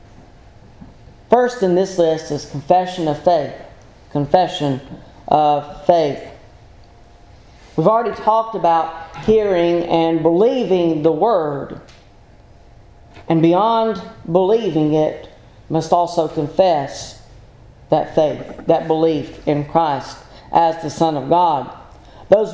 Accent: American